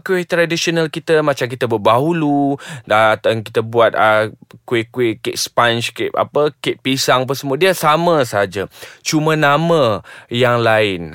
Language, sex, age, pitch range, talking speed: Malay, male, 20-39, 115-155 Hz, 145 wpm